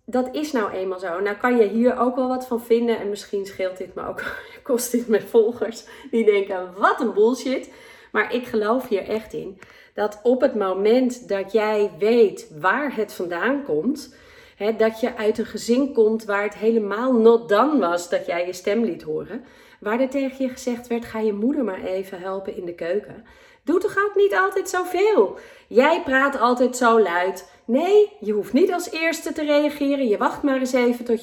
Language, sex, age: Dutch, female, 30-49